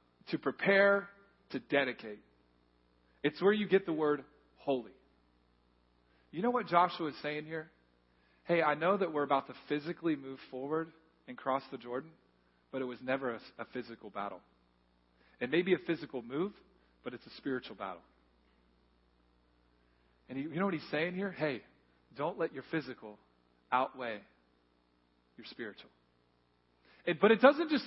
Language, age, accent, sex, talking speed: English, 40-59, American, male, 150 wpm